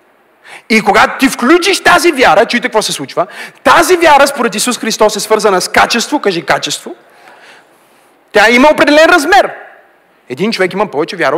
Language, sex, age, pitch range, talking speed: Bulgarian, male, 40-59, 210-325 Hz, 160 wpm